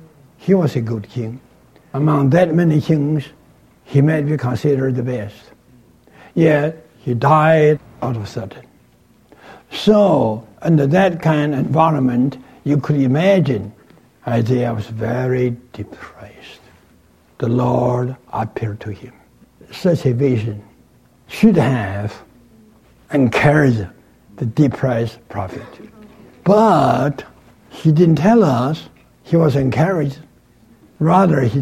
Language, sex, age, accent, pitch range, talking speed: English, male, 60-79, American, 120-160 Hz, 110 wpm